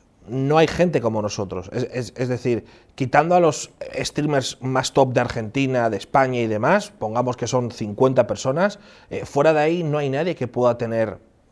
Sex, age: male, 30-49